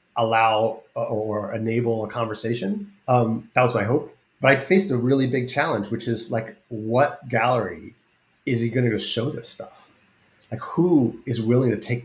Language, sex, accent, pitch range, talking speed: English, male, American, 105-125 Hz, 175 wpm